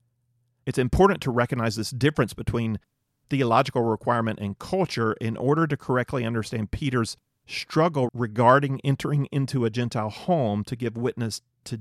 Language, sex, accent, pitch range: English, male, American, 115-140 Hz